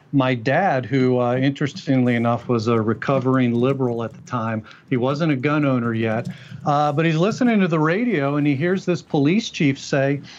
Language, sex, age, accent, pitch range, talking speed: English, male, 40-59, American, 130-160 Hz, 190 wpm